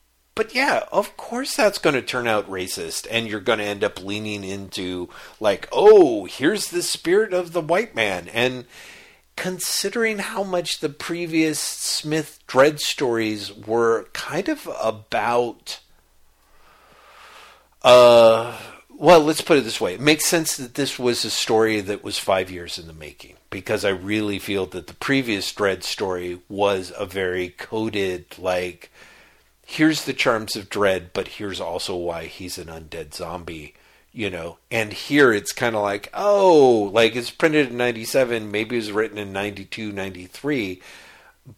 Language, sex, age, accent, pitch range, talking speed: English, male, 50-69, American, 100-155 Hz, 160 wpm